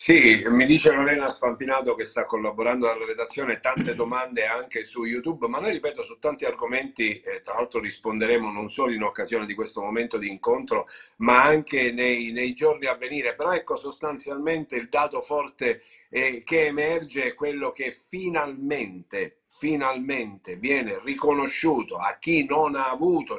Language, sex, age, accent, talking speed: Italian, male, 50-69, native, 160 wpm